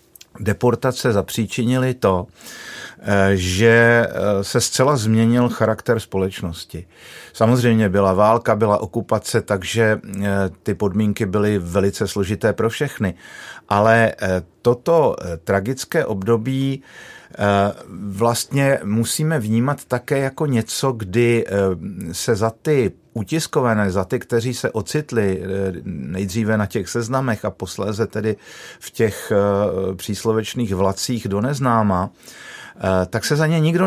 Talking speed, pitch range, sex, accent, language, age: 105 wpm, 105-130 Hz, male, native, Czech, 50-69